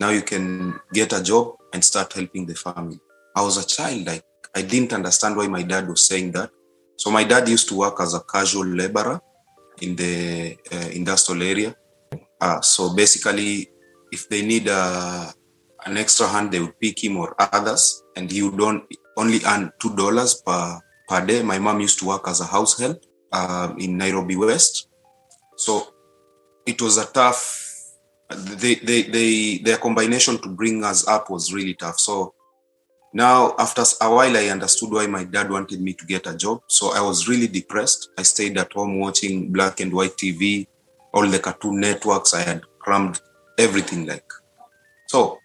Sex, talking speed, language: male, 180 wpm, Swahili